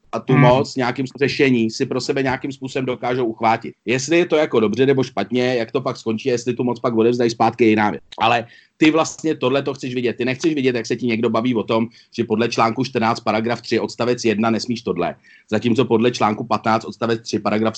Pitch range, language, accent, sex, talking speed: 120-150 Hz, Czech, native, male, 220 wpm